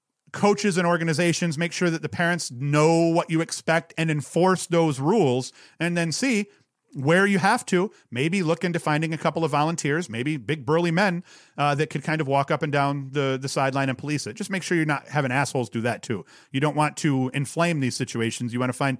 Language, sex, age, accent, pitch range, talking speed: English, male, 40-59, American, 130-165 Hz, 225 wpm